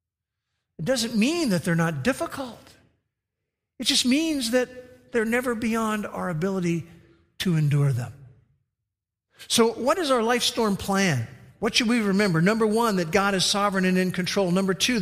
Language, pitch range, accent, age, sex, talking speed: English, 155-220 Hz, American, 50-69, male, 165 wpm